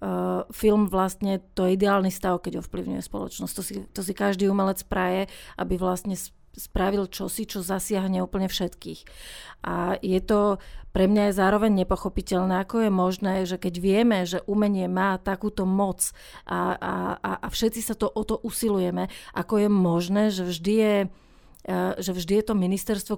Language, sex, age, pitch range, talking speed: Slovak, female, 30-49, 185-205 Hz, 160 wpm